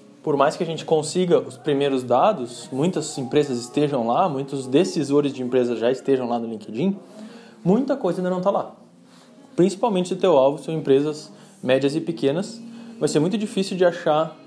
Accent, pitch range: Brazilian, 145-215 Hz